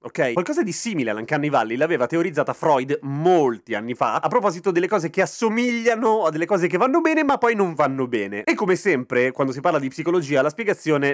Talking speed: 215 wpm